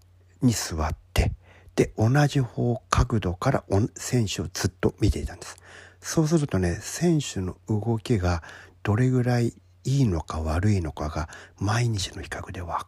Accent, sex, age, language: native, male, 50-69, Japanese